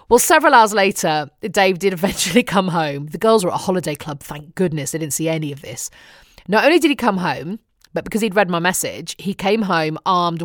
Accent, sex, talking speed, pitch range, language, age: British, female, 230 wpm, 165-215 Hz, English, 30-49